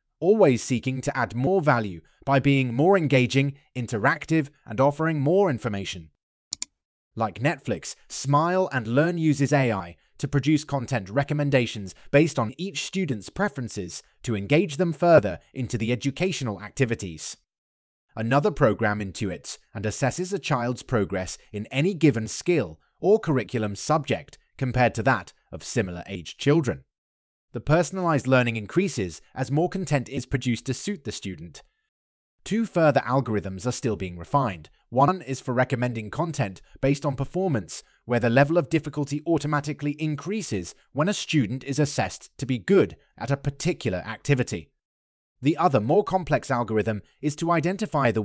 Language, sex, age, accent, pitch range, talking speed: English, male, 20-39, British, 110-150 Hz, 145 wpm